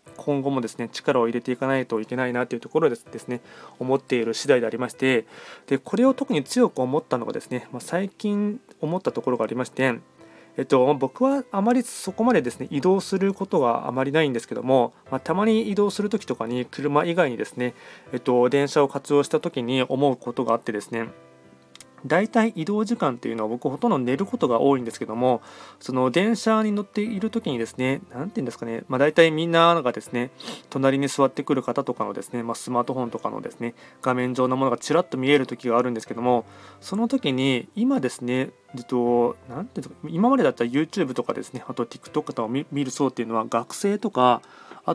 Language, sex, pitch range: Japanese, male, 120-165 Hz